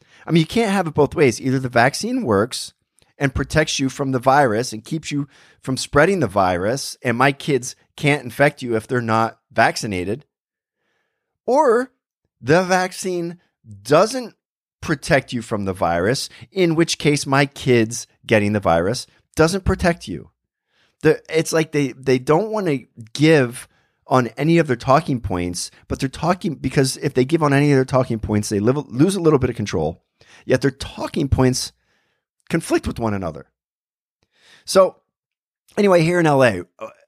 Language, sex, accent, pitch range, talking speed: English, male, American, 105-150 Hz, 165 wpm